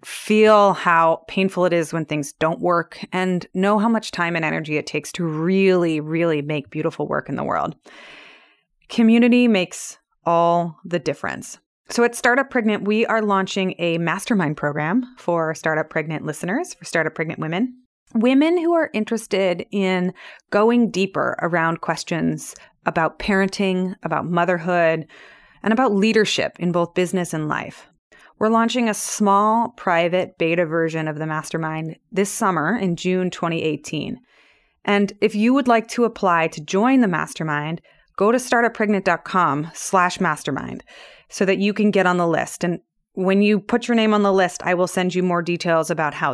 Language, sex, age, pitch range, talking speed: English, female, 30-49, 165-210 Hz, 165 wpm